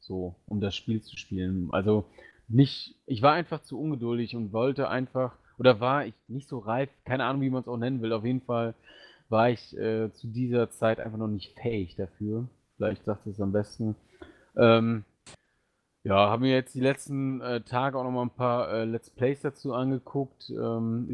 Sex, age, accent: male, 30-49, German